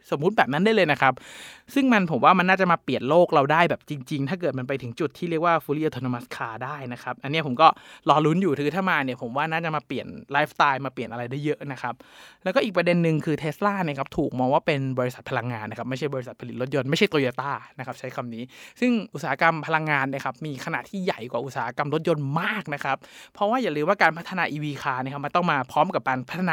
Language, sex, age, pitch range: Thai, male, 20-39, 135-175 Hz